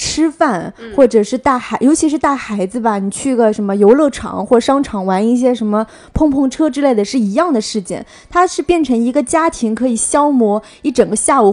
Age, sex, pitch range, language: 20-39, female, 215-295 Hz, Chinese